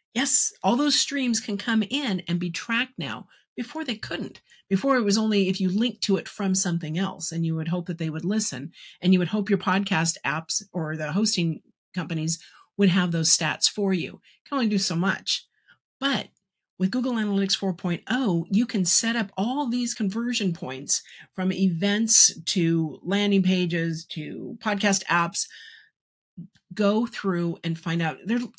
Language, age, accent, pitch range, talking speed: English, 50-69, American, 175-210 Hz, 180 wpm